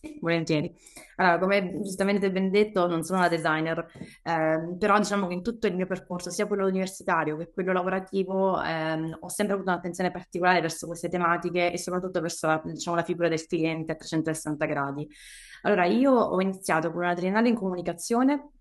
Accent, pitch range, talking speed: native, 165-190 Hz, 175 wpm